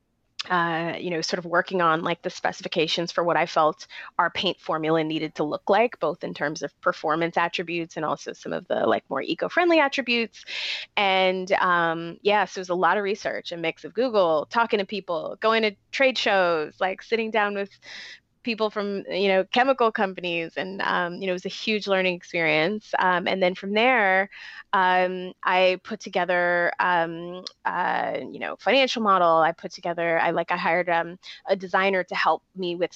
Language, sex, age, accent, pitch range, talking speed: English, female, 20-39, American, 170-200 Hz, 195 wpm